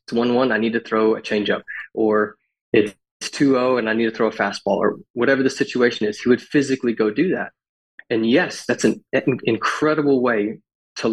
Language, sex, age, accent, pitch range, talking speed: English, male, 20-39, American, 110-130 Hz, 200 wpm